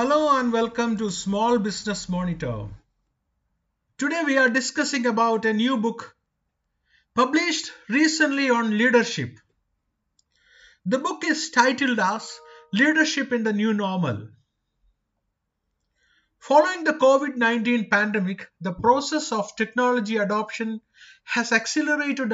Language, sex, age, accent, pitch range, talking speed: English, male, 50-69, Indian, 190-250 Hz, 105 wpm